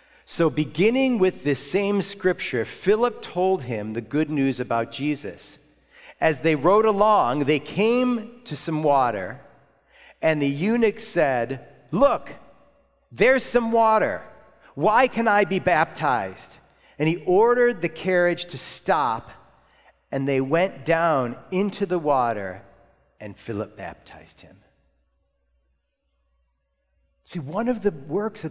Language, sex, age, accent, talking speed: English, male, 40-59, American, 125 wpm